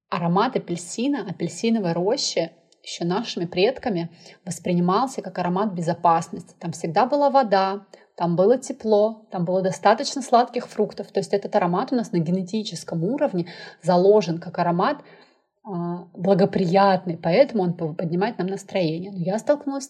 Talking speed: 135 wpm